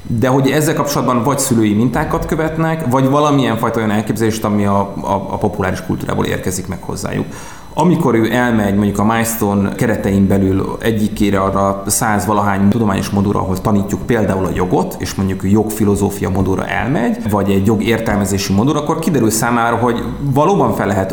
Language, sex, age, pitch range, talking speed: Hungarian, male, 30-49, 100-120 Hz, 160 wpm